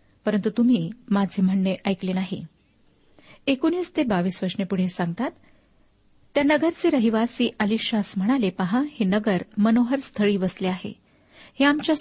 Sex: female